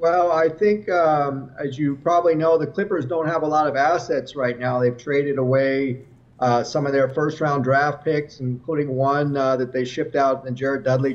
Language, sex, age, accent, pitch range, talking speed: English, male, 40-59, American, 130-165 Hz, 210 wpm